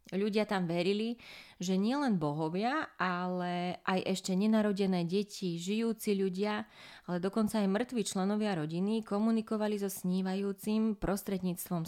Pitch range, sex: 180-210 Hz, female